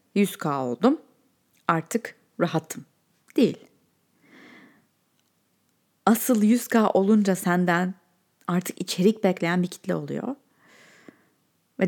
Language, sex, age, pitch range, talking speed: Turkish, female, 30-49, 165-215 Hz, 80 wpm